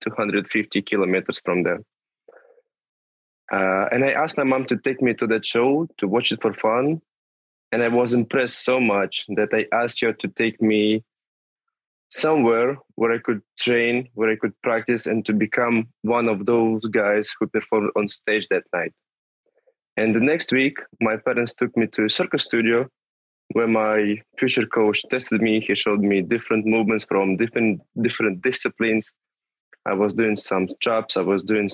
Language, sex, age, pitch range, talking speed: English, male, 20-39, 110-125 Hz, 170 wpm